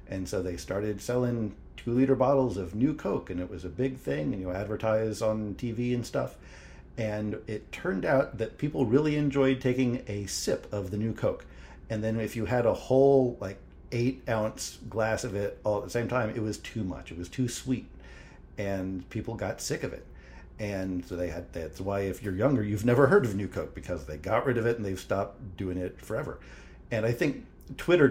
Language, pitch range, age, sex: English, 95-125 Hz, 50-69, male